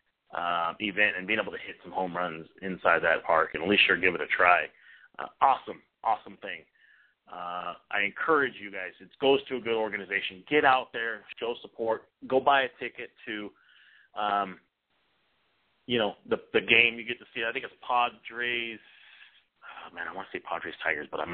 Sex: male